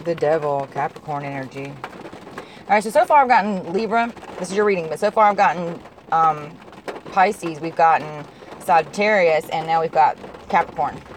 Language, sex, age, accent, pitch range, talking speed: English, female, 30-49, American, 160-195 Hz, 165 wpm